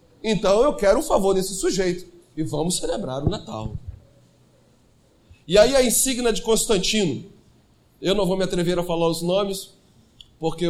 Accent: Brazilian